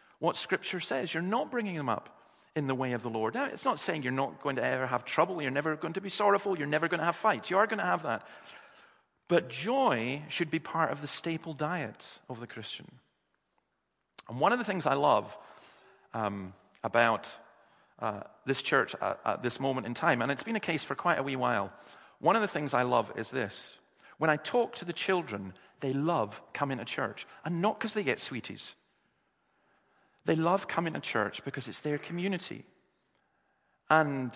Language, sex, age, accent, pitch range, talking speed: English, male, 40-59, British, 135-190 Hz, 205 wpm